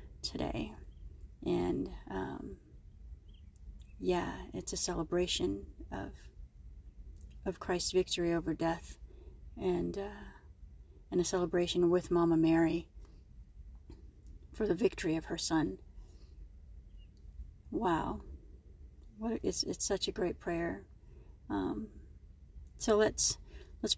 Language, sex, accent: English, female, American